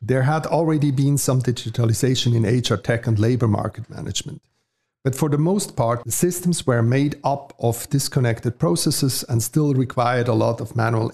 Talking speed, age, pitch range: 180 wpm, 50-69, 120-140 Hz